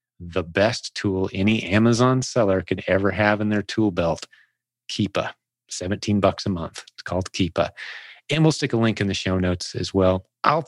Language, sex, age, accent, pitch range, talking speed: English, male, 30-49, American, 100-120 Hz, 185 wpm